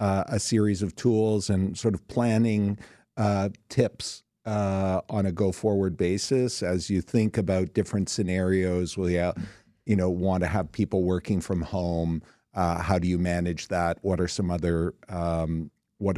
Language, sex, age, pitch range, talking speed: English, male, 50-69, 90-100 Hz, 170 wpm